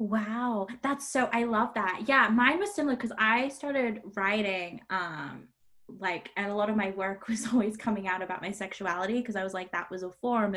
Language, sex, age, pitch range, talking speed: English, female, 10-29, 195-245 Hz, 210 wpm